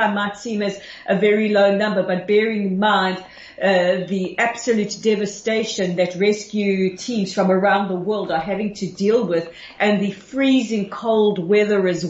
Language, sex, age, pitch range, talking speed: English, female, 40-59, 185-210 Hz, 165 wpm